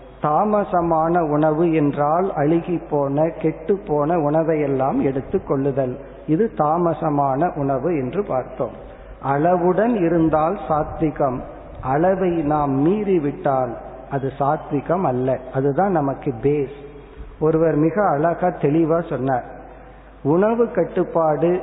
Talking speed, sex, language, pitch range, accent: 95 wpm, male, Tamil, 140-175 Hz, native